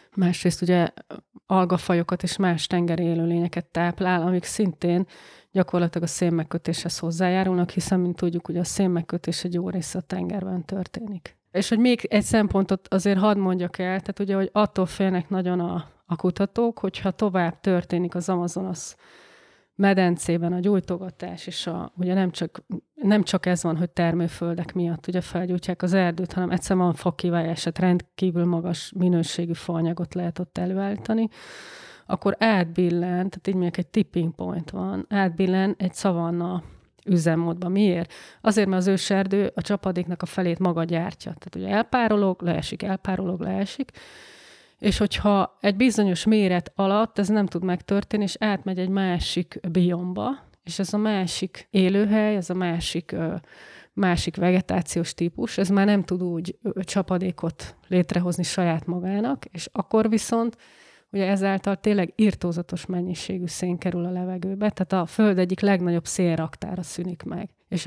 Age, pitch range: 20-39, 175-195 Hz